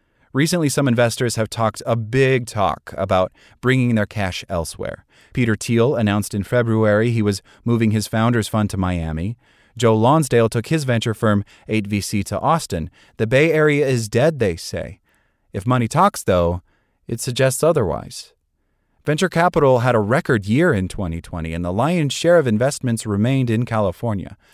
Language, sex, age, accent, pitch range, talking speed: English, male, 30-49, American, 100-135 Hz, 160 wpm